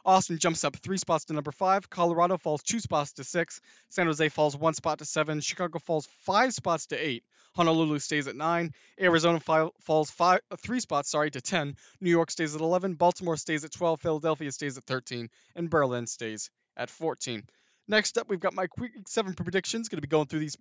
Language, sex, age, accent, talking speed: English, male, 20-39, American, 215 wpm